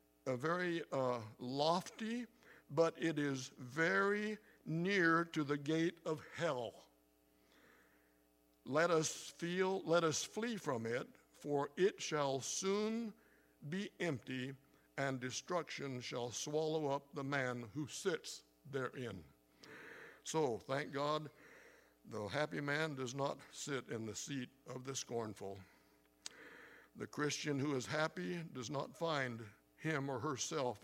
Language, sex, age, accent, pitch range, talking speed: English, male, 60-79, American, 130-160 Hz, 125 wpm